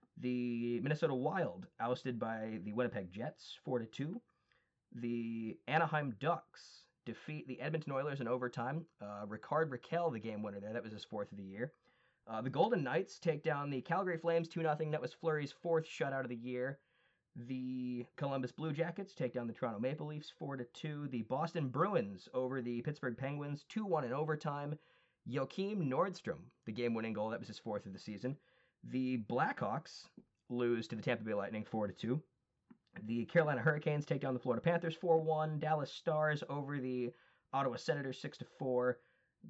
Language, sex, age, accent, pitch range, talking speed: English, male, 20-39, American, 120-155 Hz, 170 wpm